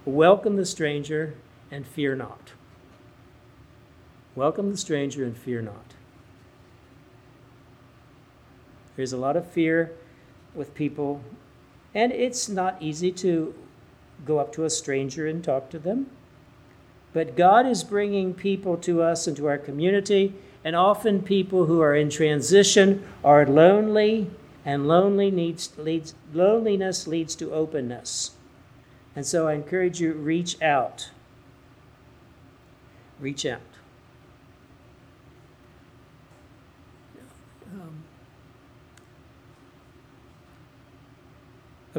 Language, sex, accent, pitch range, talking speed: English, male, American, 130-180 Hz, 100 wpm